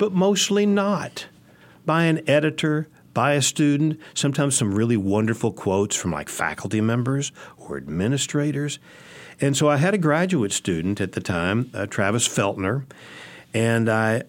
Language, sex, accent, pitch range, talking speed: English, male, American, 95-140 Hz, 145 wpm